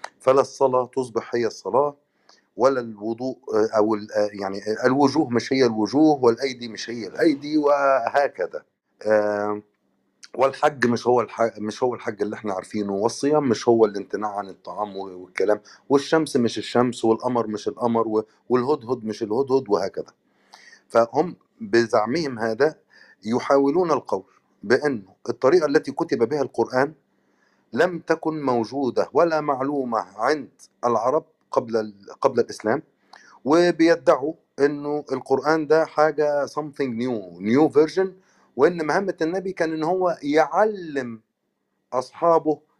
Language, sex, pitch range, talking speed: Arabic, male, 115-150 Hz, 115 wpm